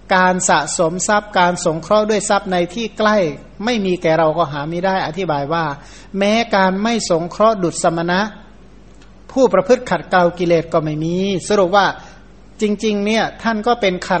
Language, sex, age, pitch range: Thai, male, 60-79, 165-200 Hz